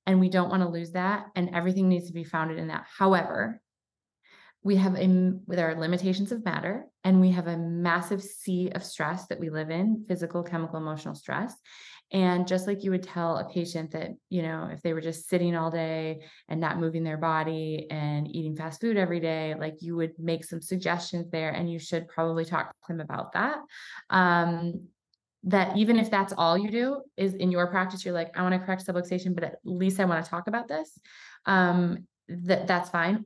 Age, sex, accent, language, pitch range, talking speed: 20-39, female, American, English, 160-190 Hz, 210 wpm